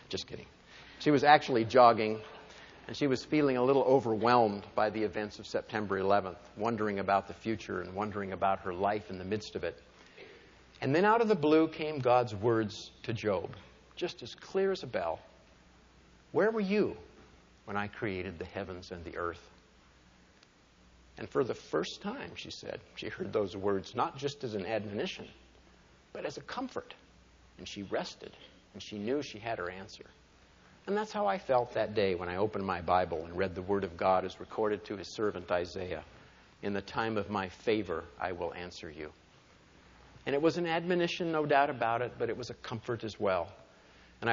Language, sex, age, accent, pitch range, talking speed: English, male, 50-69, American, 95-125 Hz, 190 wpm